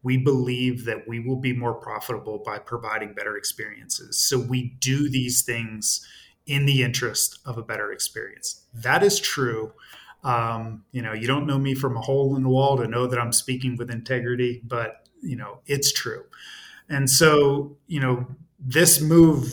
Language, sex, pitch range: English, male, 125-140 Hz